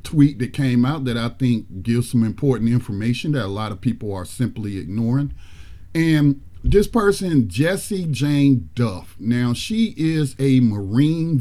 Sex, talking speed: male, 160 wpm